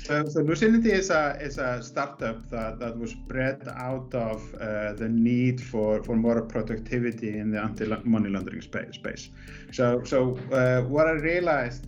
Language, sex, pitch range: English, male, 110-125 Hz